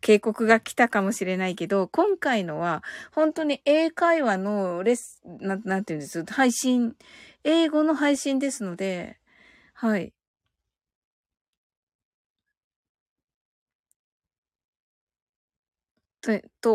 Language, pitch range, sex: Japanese, 190-260 Hz, female